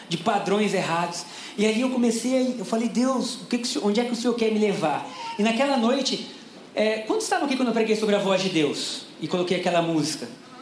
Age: 20-39